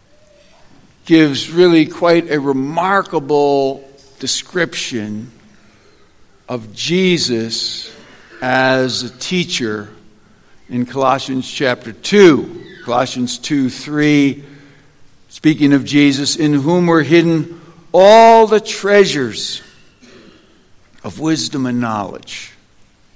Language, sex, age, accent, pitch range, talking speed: English, male, 60-79, American, 130-195 Hz, 85 wpm